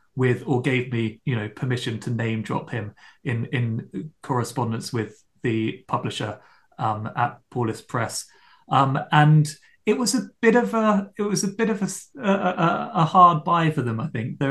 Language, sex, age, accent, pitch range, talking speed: English, male, 30-49, British, 120-150 Hz, 180 wpm